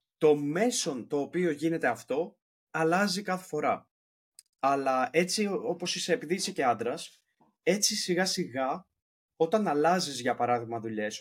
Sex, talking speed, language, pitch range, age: male, 130 wpm, Greek, 135-170 Hz, 30-49